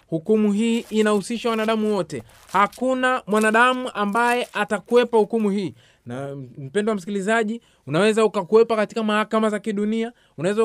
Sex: male